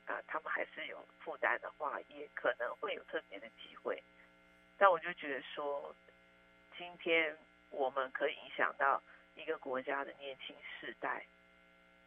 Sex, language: female, Chinese